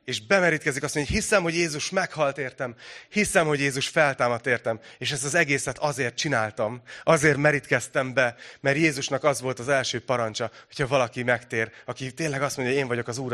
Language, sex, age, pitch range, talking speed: Hungarian, male, 30-49, 120-160 Hz, 195 wpm